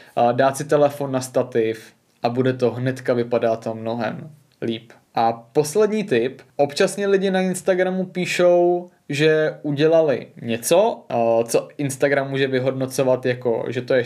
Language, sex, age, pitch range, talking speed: Czech, male, 20-39, 130-165 Hz, 140 wpm